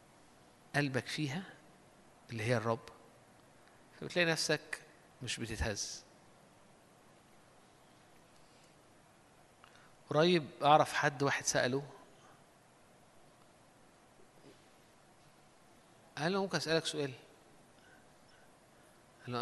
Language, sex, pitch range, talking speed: Arabic, male, 120-160 Hz, 60 wpm